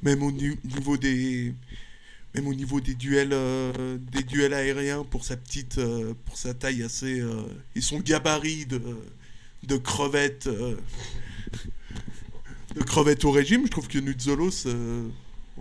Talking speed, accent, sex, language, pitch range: 150 wpm, French, male, French, 120-145 Hz